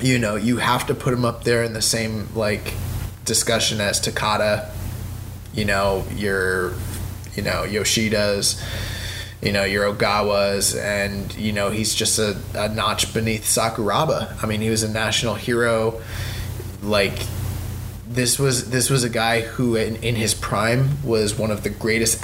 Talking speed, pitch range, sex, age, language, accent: 160 wpm, 105-115 Hz, male, 20-39, English, American